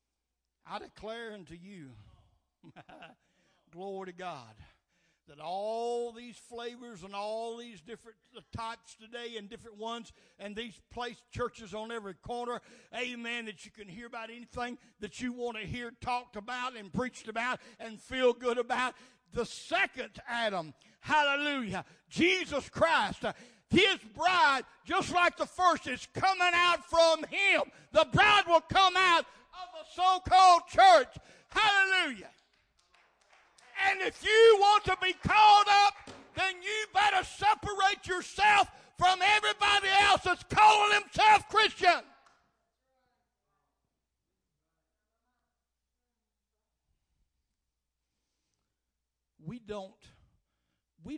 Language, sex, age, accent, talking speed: English, male, 60-79, American, 115 wpm